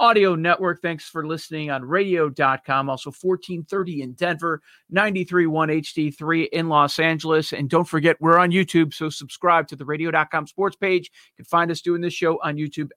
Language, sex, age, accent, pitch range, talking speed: English, male, 40-59, American, 155-185 Hz, 175 wpm